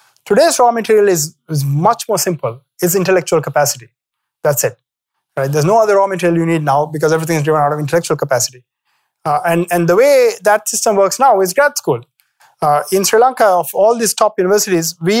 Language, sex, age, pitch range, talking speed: English, male, 30-49, 150-195 Hz, 205 wpm